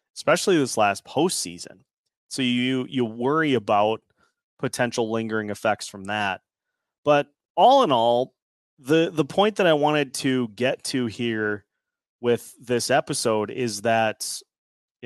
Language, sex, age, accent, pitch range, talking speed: English, male, 30-49, American, 115-150 Hz, 135 wpm